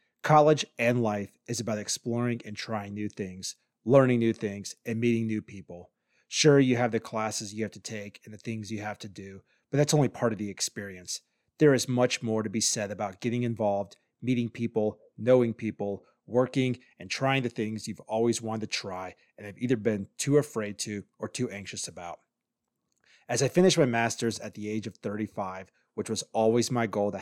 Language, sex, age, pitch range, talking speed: English, male, 30-49, 105-120 Hz, 200 wpm